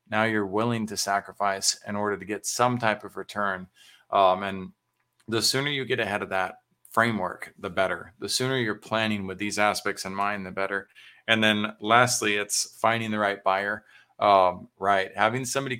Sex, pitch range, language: male, 100-115 Hz, English